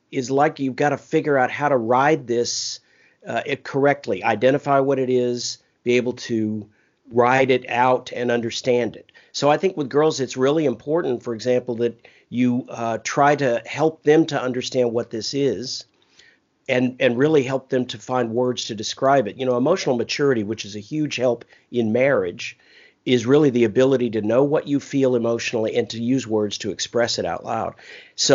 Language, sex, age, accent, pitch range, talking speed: English, male, 50-69, American, 115-135 Hz, 190 wpm